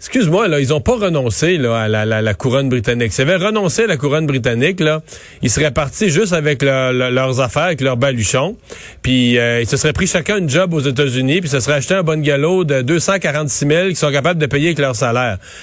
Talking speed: 240 wpm